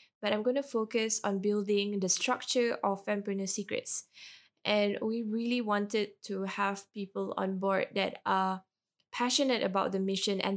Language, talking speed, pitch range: English, 160 wpm, 190-225 Hz